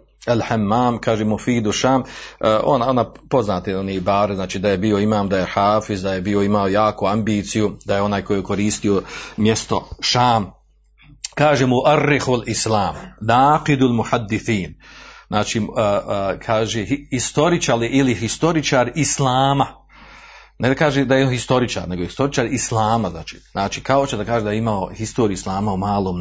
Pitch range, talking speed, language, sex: 105-160 Hz, 150 wpm, Croatian, male